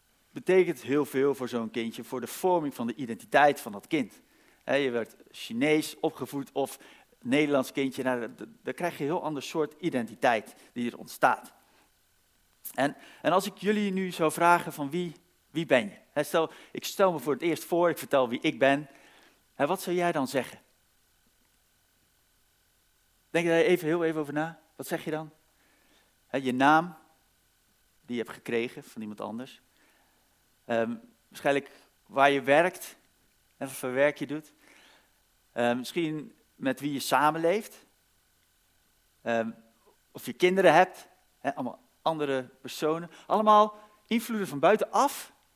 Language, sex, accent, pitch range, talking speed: Dutch, male, Dutch, 130-170 Hz, 145 wpm